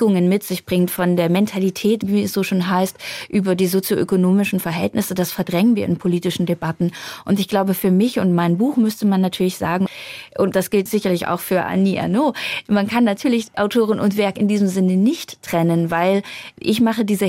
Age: 20-39